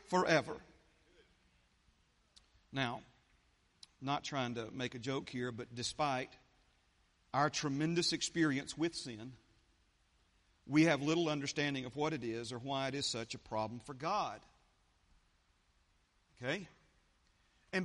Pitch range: 130-190 Hz